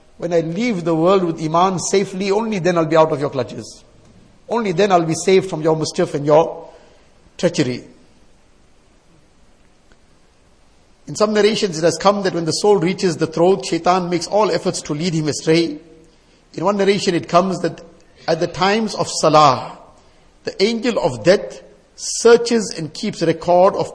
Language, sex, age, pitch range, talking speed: English, male, 50-69, 155-190 Hz, 170 wpm